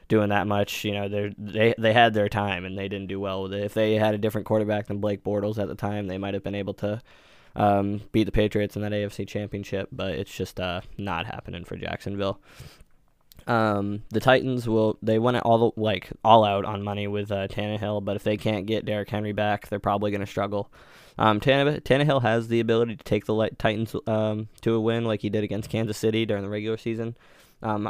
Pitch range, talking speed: 100-110 Hz, 225 wpm